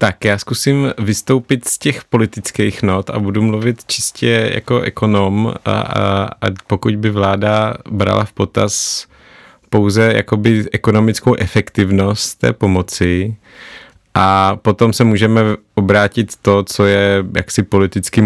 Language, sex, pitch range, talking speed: Czech, male, 95-115 Hz, 130 wpm